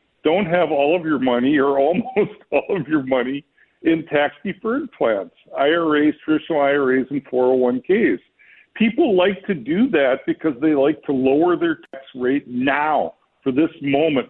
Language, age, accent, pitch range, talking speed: English, 50-69, American, 130-195 Hz, 160 wpm